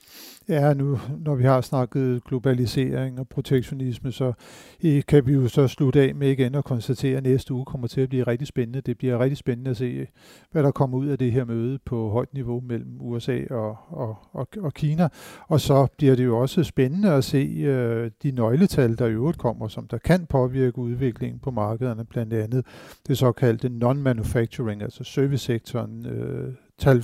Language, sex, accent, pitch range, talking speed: Danish, male, native, 120-140 Hz, 185 wpm